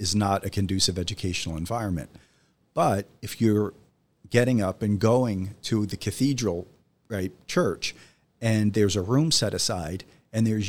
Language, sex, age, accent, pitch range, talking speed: English, male, 50-69, American, 100-120 Hz, 145 wpm